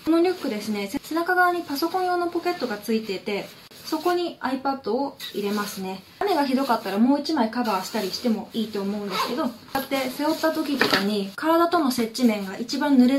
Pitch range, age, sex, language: 210-285 Hz, 20-39, female, Japanese